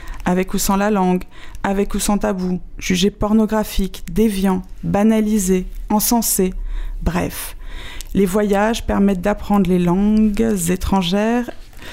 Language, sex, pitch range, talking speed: French, female, 185-230 Hz, 110 wpm